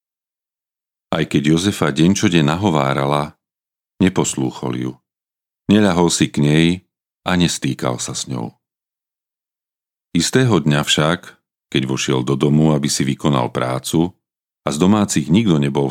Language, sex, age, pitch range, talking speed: Slovak, male, 40-59, 75-100 Hz, 130 wpm